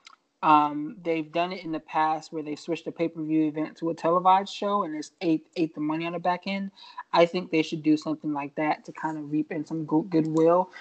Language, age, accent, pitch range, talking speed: English, 20-39, American, 150-180 Hz, 235 wpm